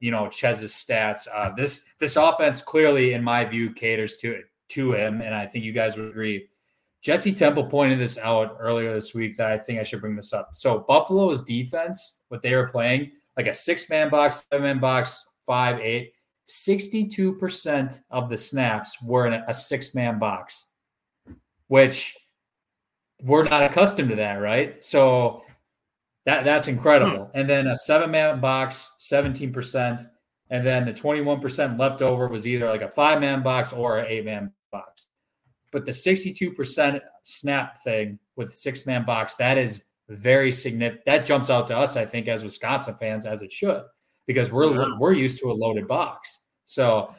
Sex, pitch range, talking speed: male, 110-140 Hz, 170 wpm